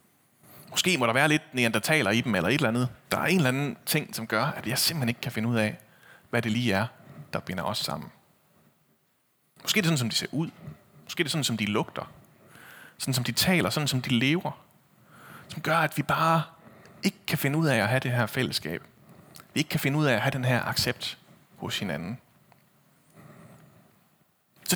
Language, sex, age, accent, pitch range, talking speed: Danish, male, 30-49, native, 120-160 Hz, 225 wpm